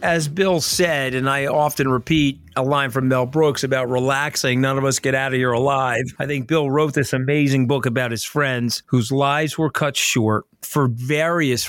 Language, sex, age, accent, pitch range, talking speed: English, male, 50-69, American, 120-145 Hz, 200 wpm